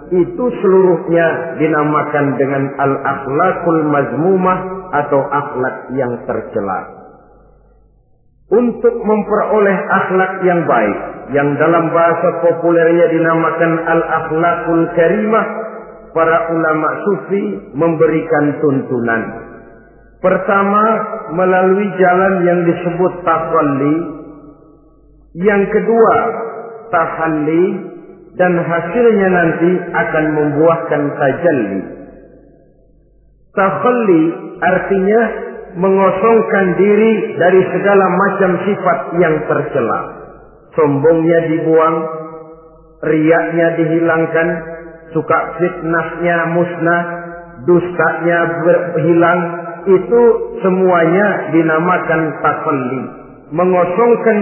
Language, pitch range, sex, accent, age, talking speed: Indonesian, 155-190 Hz, male, native, 50-69, 75 wpm